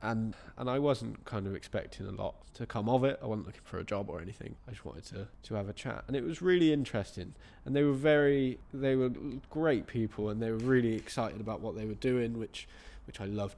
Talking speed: 250 wpm